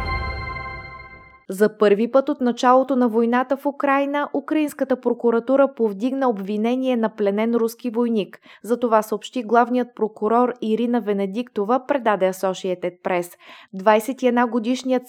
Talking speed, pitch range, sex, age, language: 110 wpm, 200-245 Hz, female, 20-39, Bulgarian